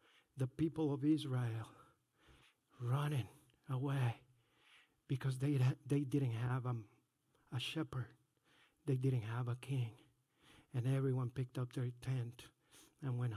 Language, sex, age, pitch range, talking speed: English, male, 50-69, 130-155 Hz, 115 wpm